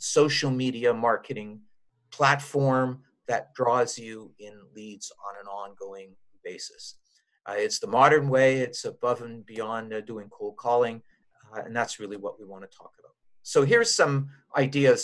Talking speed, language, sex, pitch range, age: 160 wpm, English, male, 115-145 Hz, 50-69